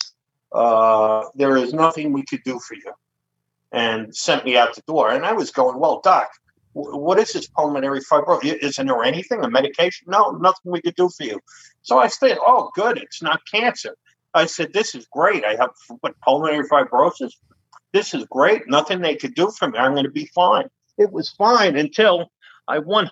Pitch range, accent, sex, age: 135-210 Hz, American, male, 50-69